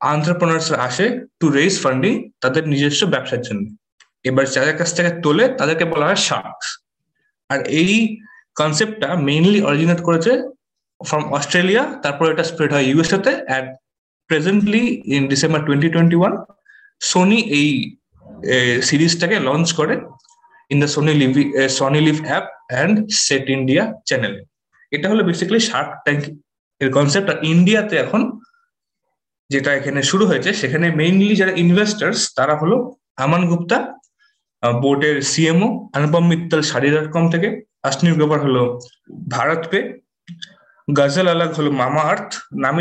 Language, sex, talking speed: Bengali, male, 55 wpm